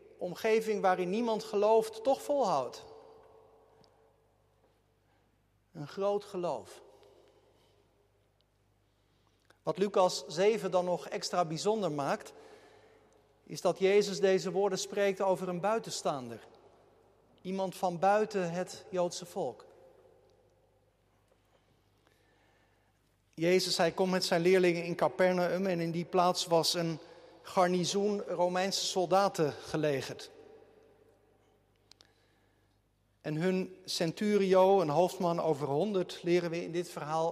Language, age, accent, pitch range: Dutch, 50-69, Dutch, 150-205 Hz